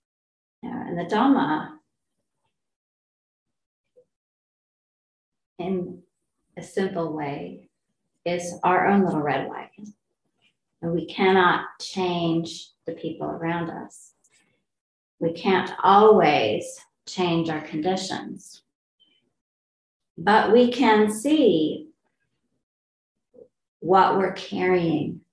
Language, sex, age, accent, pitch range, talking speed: English, female, 40-59, American, 165-210 Hz, 80 wpm